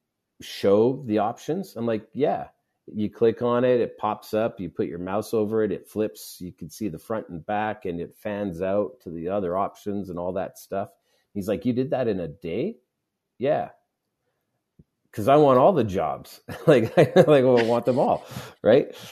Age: 40-59